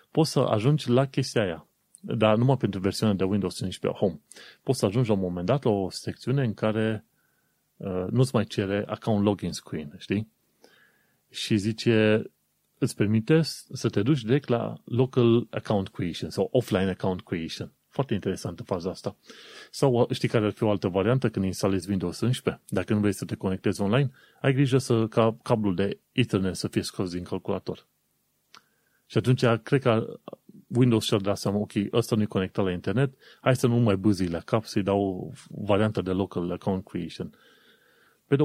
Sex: male